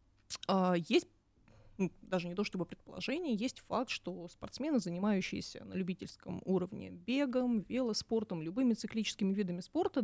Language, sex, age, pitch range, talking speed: Russian, female, 20-39, 180-240 Hz, 125 wpm